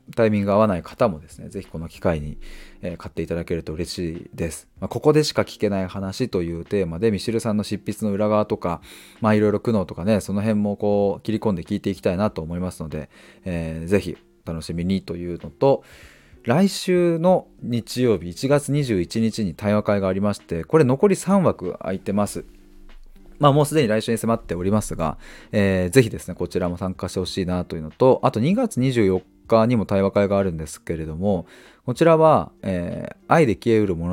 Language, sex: Japanese, male